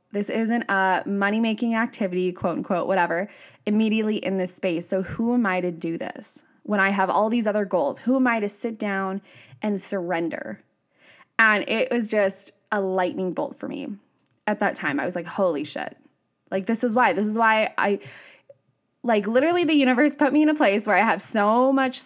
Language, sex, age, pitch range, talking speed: English, female, 10-29, 185-230 Hz, 200 wpm